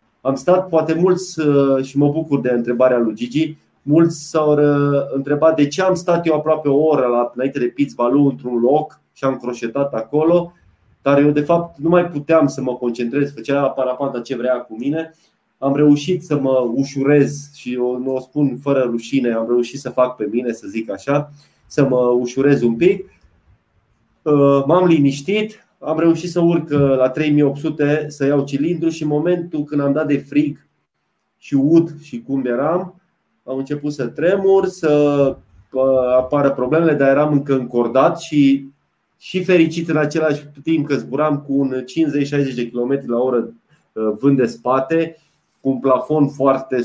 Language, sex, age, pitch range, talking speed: Romanian, male, 30-49, 125-155 Hz, 170 wpm